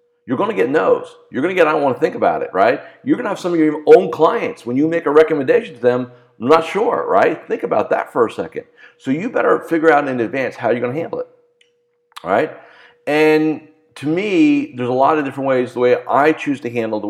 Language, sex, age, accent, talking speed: English, male, 50-69, American, 260 wpm